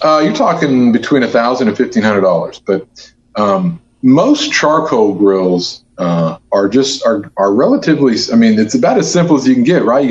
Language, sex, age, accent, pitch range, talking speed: English, male, 40-59, American, 105-130 Hz, 200 wpm